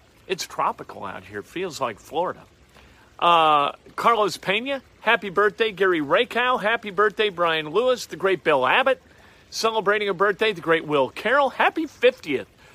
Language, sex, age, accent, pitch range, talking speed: English, male, 50-69, American, 140-205 Hz, 145 wpm